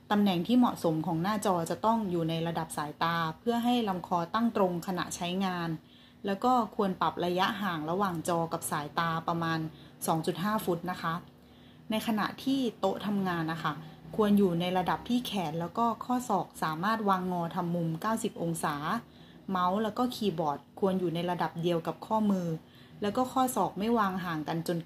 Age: 20-39